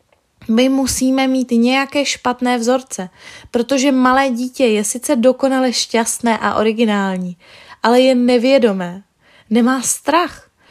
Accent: native